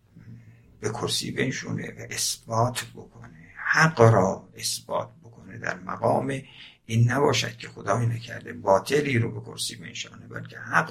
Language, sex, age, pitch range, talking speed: Persian, male, 60-79, 110-140 Hz, 130 wpm